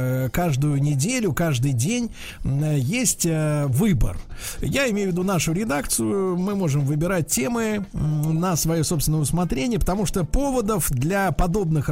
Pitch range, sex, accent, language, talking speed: 140-190 Hz, male, native, Russian, 125 wpm